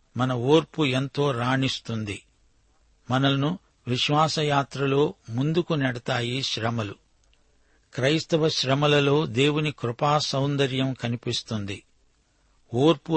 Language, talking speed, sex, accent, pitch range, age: Telugu, 75 wpm, male, native, 125-150 Hz, 60-79